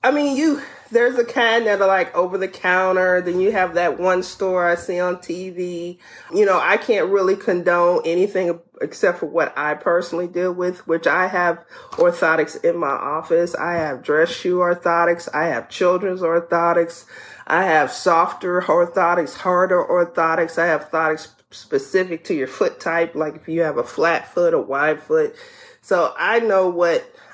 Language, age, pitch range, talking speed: English, 30-49, 165-275 Hz, 170 wpm